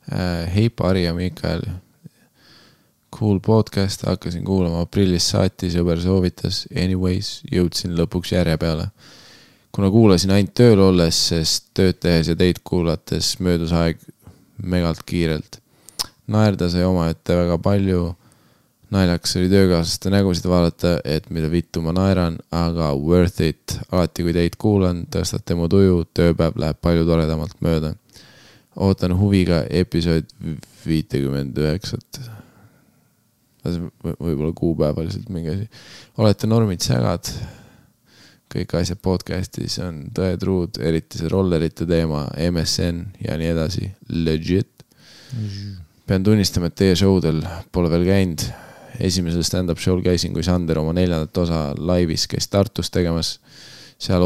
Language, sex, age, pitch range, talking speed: English, male, 20-39, 85-95 Hz, 120 wpm